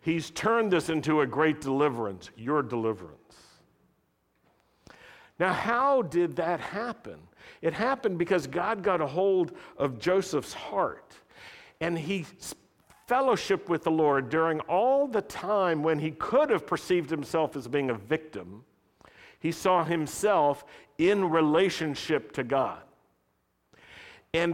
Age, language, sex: 50-69, English, male